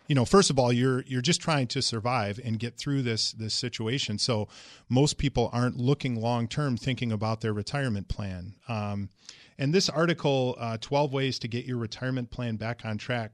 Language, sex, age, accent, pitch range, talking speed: English, male, 40-59, American, 110-135 Hz, 200 wpm